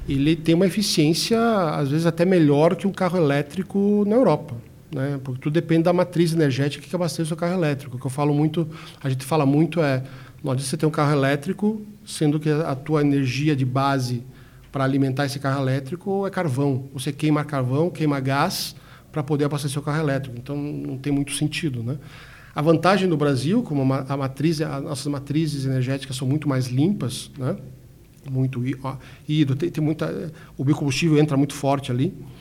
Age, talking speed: 50-69, 190 wpm